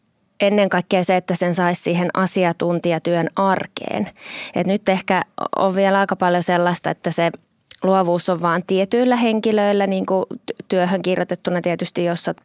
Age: 20-39